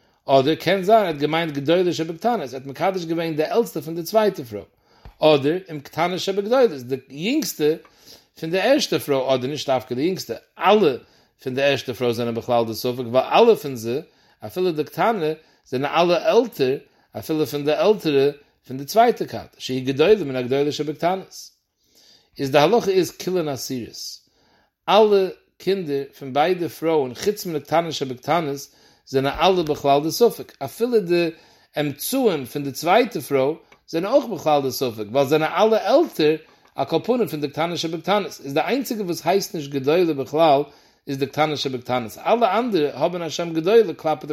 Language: English